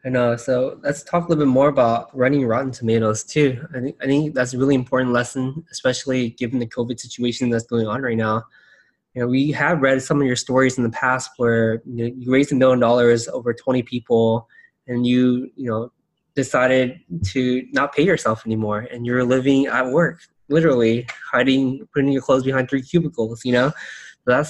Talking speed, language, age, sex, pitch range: 195 wpm, English, 20-39, male, 120-145 Hz